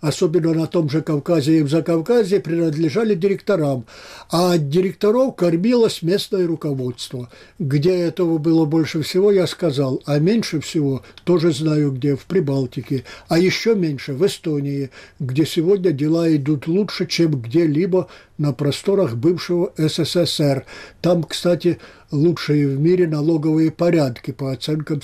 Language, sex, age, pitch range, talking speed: Russian, male, 60-79, 150-200 Hz, 135 wpm